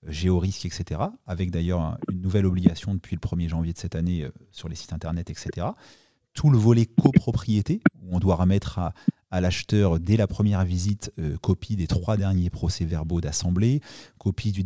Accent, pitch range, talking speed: French, 85-105 Hz, 180 wpm